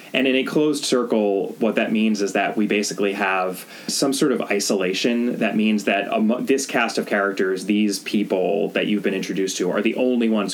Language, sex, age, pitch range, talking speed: English, male, 20-39, 95-120 Hz, 205 wpm